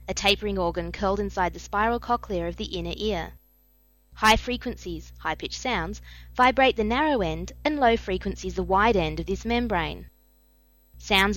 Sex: female